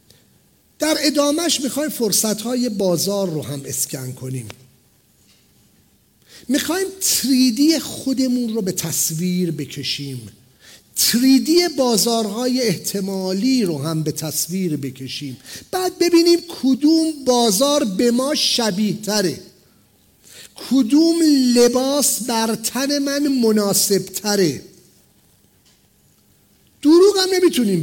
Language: English